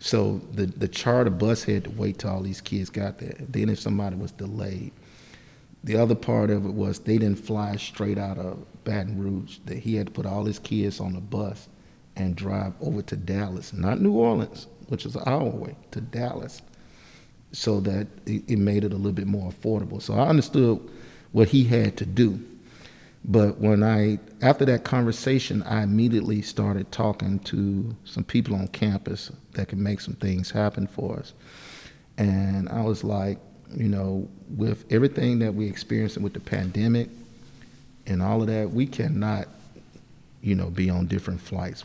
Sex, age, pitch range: male, 50-69, 100-115 Hz